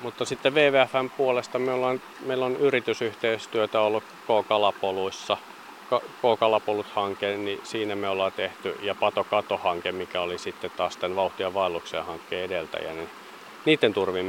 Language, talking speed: Finnish, 130 wpm